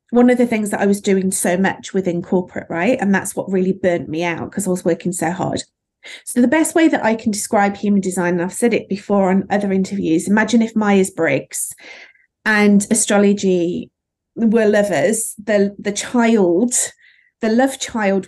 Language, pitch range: English, 190-225 Hz